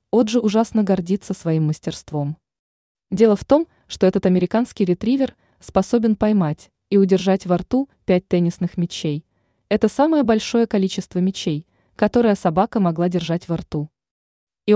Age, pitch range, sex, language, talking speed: 20-39, 175-215 Hz, female, Russian, 135 wpm